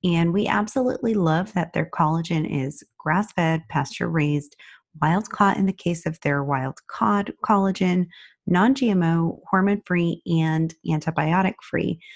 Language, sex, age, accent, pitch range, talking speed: English, female, 30-49, American, 150-185 Hz, 115 wpm